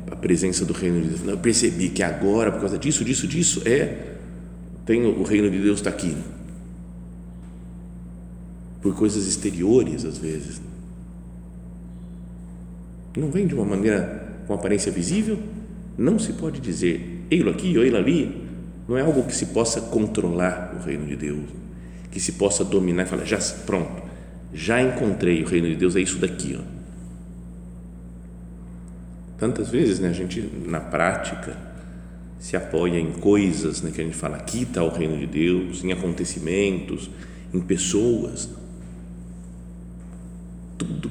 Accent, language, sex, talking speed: Brazilian, Portuguese, male, 145 wpm